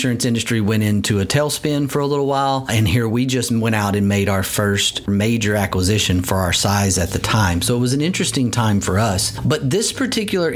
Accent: American